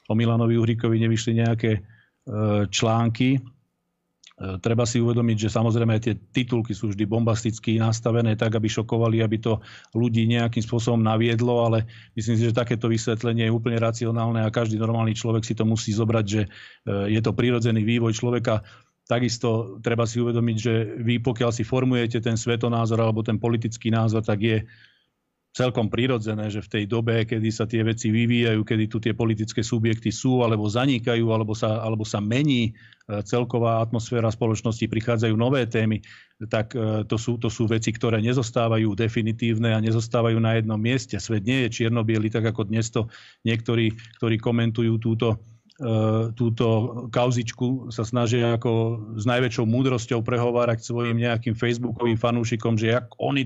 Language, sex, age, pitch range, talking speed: Slovak, male, 40-59, 110-120 Hz, 160 wpm